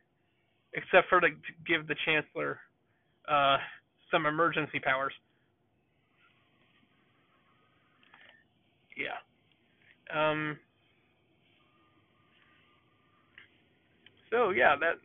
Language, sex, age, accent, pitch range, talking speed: English, male, 20-39, American, 140-165 Hz, 65 wpm